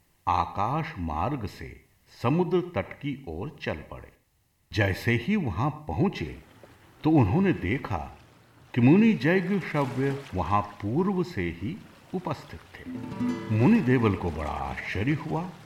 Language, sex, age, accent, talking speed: Hindi, male, 70-89, native, 115 wpm